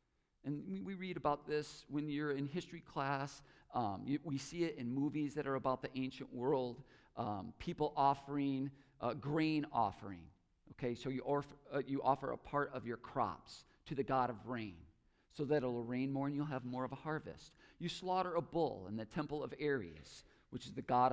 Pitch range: 125-165 Hz